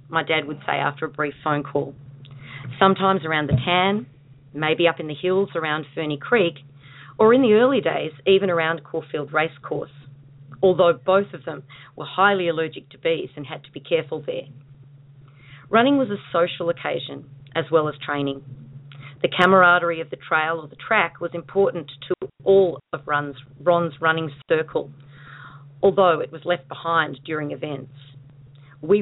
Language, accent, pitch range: English, Australian, 140-170 Hz